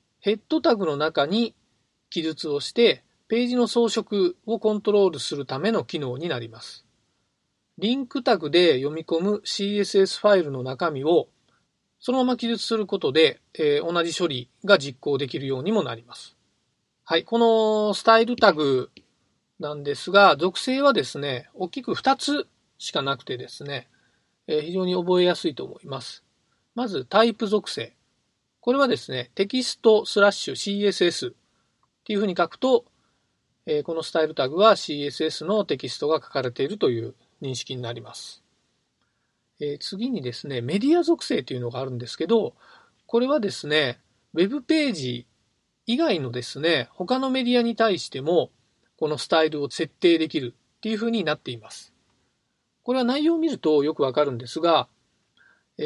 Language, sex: Japanese, male